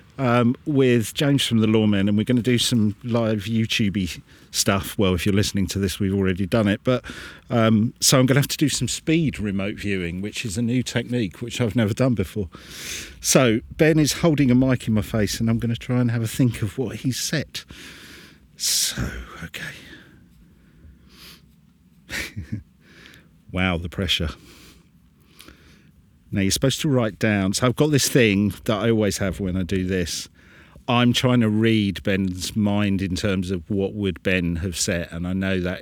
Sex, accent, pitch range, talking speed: male, British, 90-120 Hz, 185 wpm